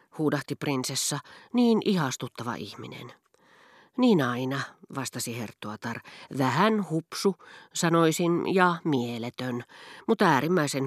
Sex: female